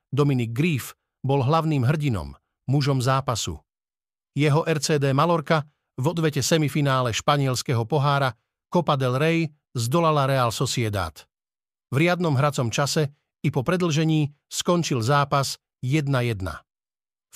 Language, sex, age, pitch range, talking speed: Slovak, male, 50-69, 115-150 Hz, 105 wpm